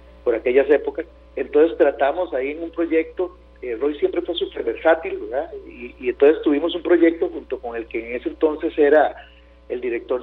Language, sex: Spanish, male